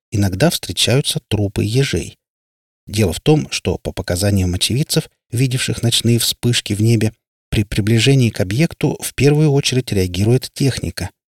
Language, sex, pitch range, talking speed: Russian, male, 100-130 Hz, 135 wpm